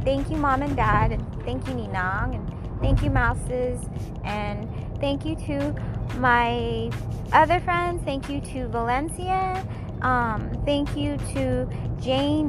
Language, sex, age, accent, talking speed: English, female, 20-39, American, 130 wpm